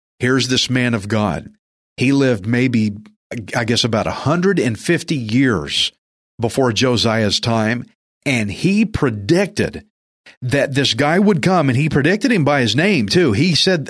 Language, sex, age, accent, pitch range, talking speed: English, male, 50-69, American, 120-165 Hz, 145 wpm